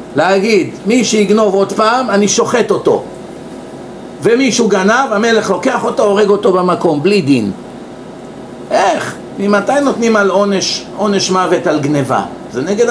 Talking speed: 140 wpm